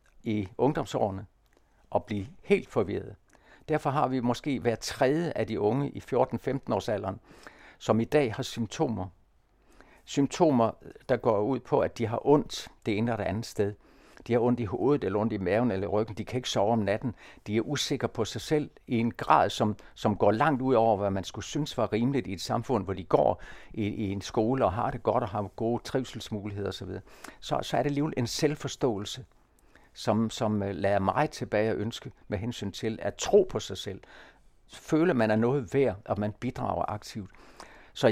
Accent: native